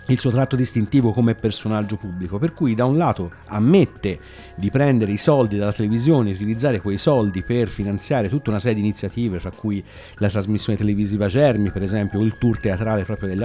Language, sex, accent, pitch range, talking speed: Italian, male, native, 105-135 Hz, 190 wpm